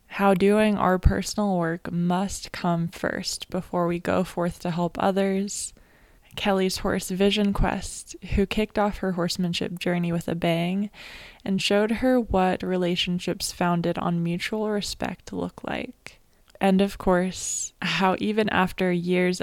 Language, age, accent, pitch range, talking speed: English, 20-39, American, 175-200 Hz, 140 wpm